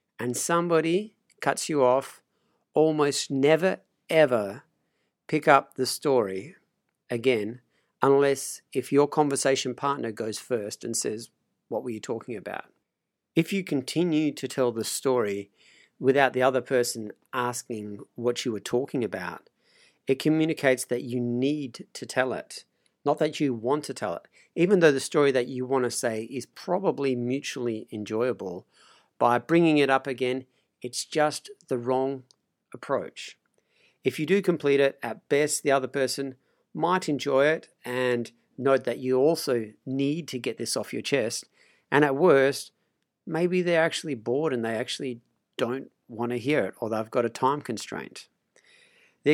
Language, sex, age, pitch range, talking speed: English, male, 50-69, 125-150 Hz, 155 wpm